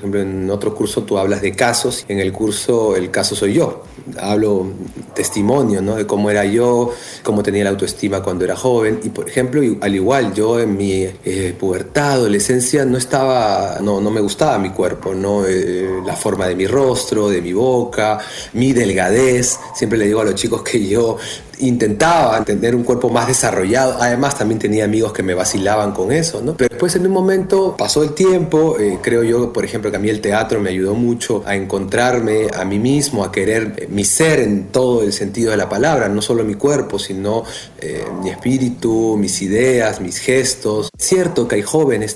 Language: Spanish